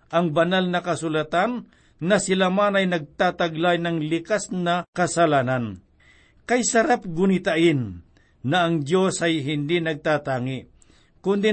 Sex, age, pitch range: male, 50-69, 155-190 Hz